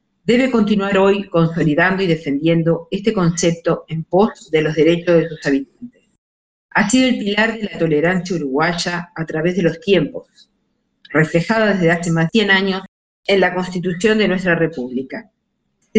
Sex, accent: female, Argentinian